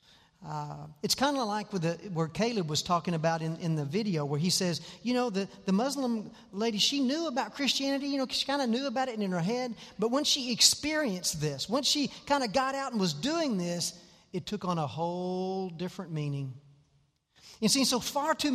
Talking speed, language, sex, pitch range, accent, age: 215 wpm, English, male, 155-230 Hz, American, 40-59